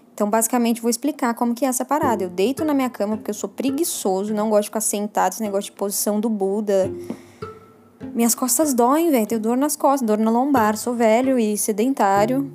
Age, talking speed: 10-29, 210 wpm